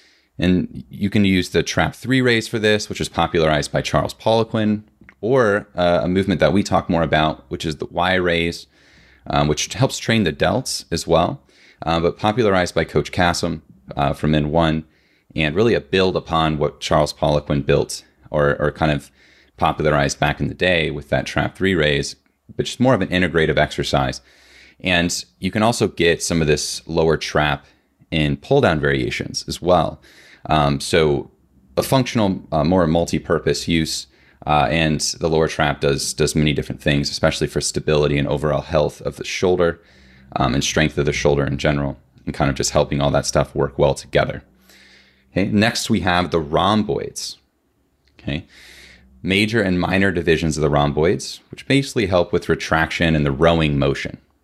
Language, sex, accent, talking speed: English, male, American, 180 wpm